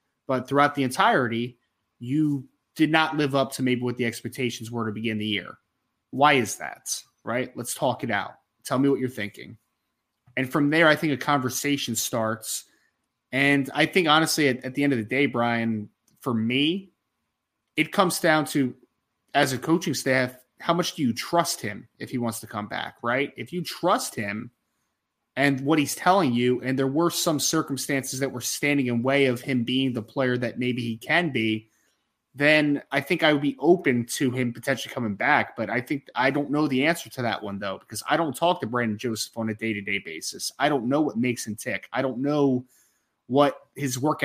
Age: 20-39